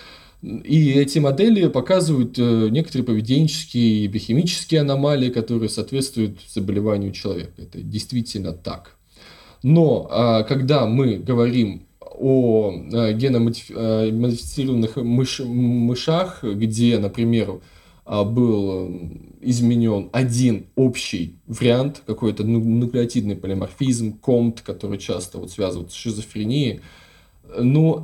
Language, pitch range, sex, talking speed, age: Russian, 110-135 Hz, male, 90 wpm, 20-39